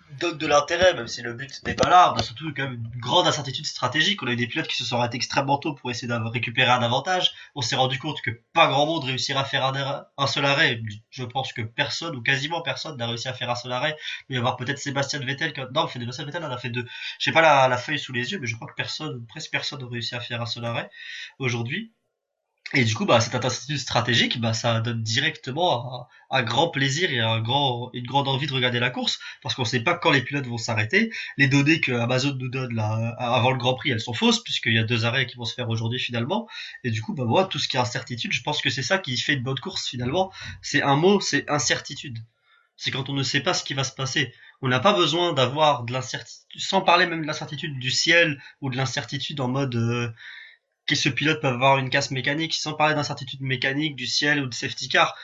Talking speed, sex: 265 wpm, male